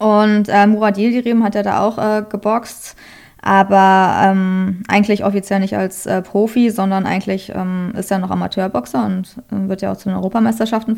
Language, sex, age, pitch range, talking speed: German, female, 20-39, 195-225 Hz, 180 wpm